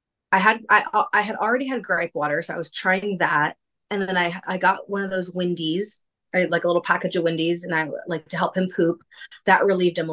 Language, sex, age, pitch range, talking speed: English, female, 30-49, 170-215 Hz, 245 wpm